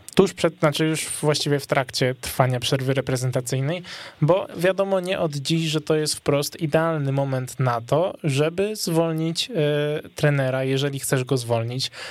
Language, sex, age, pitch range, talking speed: Polish, male, 20-39, 135-160 Hz, 150 wpm